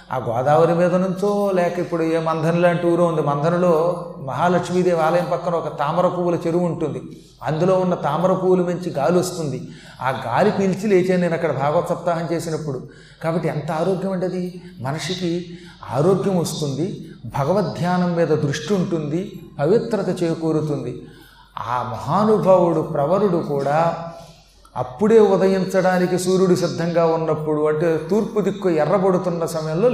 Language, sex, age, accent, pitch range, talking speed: Telugu, male, 30-49, native, 155-185 Hz, 125 wpm